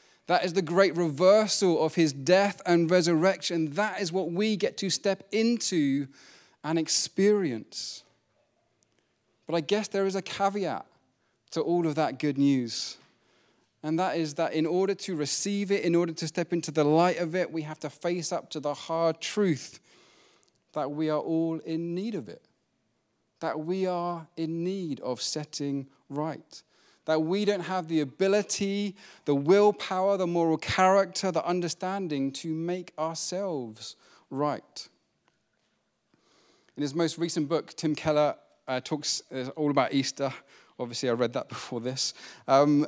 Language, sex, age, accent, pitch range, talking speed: English, male, 30-49, British, 150-190 Hz, 160 wpm